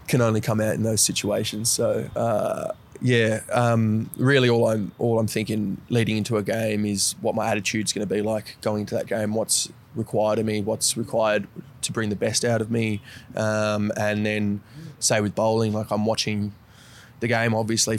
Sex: male